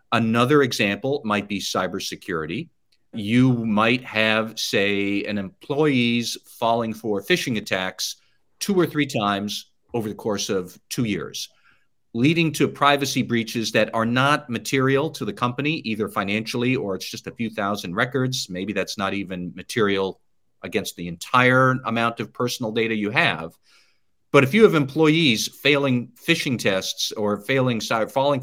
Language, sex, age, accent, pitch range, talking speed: English, male, 50-69, American, 105-135 Hz, 150 wpm